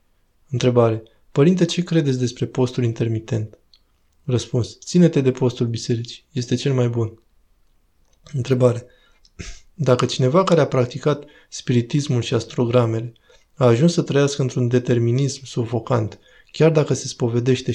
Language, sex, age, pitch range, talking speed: Romanian, male, 20-39, 120-140 Hz, 120 wpm